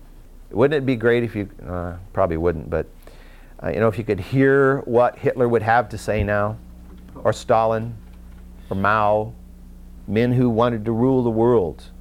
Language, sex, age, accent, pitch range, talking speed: English, male, 50-69, American, 90-130 Hz, 175 wpm